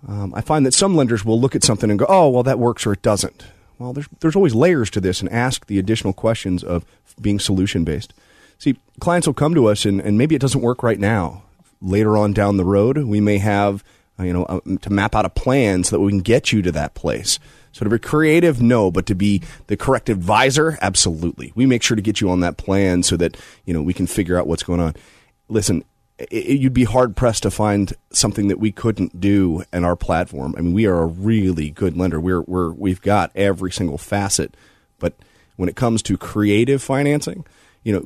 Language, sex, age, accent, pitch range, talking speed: English, male, 30-49, American, 95-120 Hz, 235 wpm